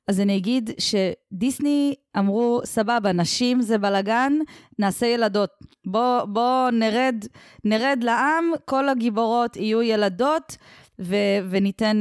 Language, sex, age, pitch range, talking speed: Hebrew, female, 20-39, 190-245 Hz, 110 wpm